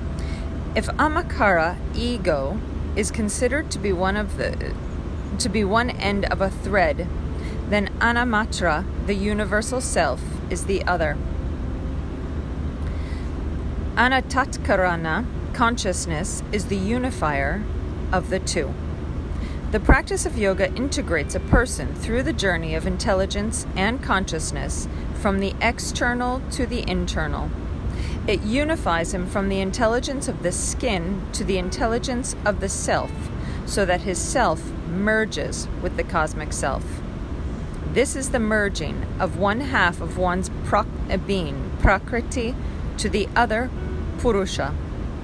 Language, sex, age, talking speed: English, female, 40-59, 120 wpm